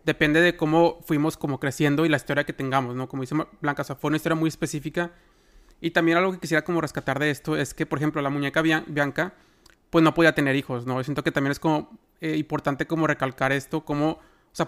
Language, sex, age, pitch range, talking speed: Spanish, male, 30-49, 145-165 Hz, 235 wpm